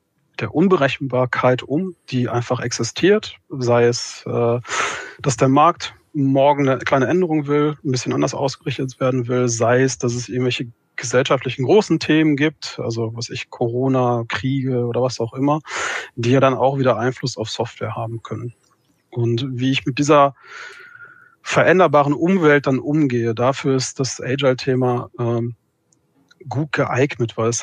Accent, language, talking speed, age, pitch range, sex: German, German, 145 wpm, 30-49, 120-135 Hz, male